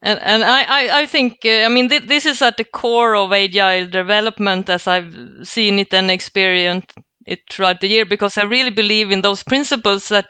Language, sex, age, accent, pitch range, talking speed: English, female, 30-49, Swedish, 195-235 Hz, 205 wpm